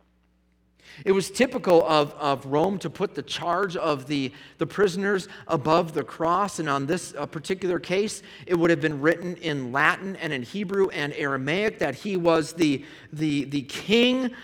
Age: 40-59